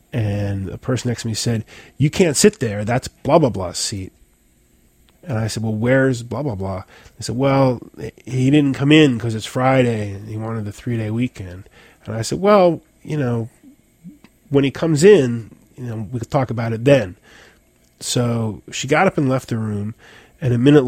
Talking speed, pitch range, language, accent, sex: 200 wpm, 110-135 Hz, English, American, male